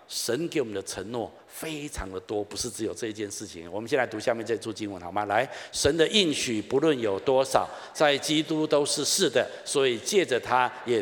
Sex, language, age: male, Chinese, 50-69